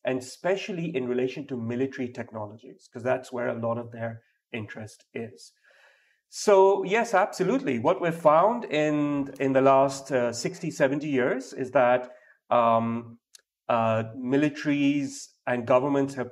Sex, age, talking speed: male, 40-59, 140 wpm